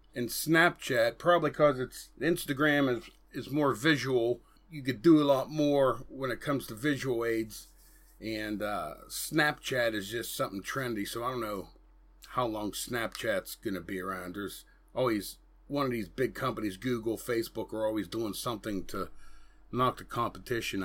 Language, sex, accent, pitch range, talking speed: English, male, American, 125-155 Hz, 165 wpm